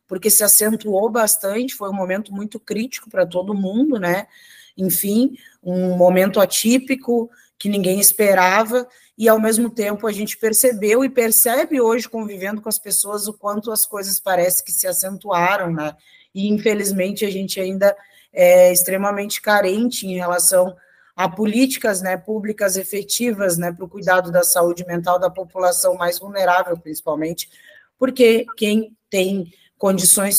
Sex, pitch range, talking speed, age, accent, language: female, 185-225 Hz, 145 wpm, 20-39, Brazilian, Portuguese